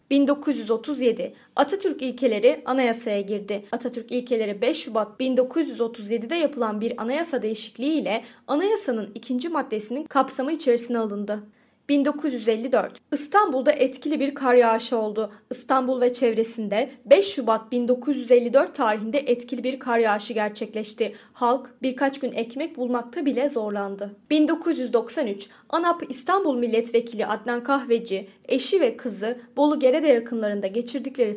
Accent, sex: native, female